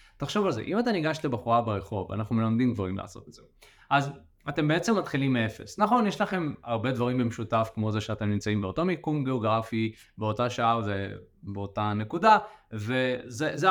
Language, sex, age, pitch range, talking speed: Hebrew, male, 20-39, 110-160 Hz, 160 wpm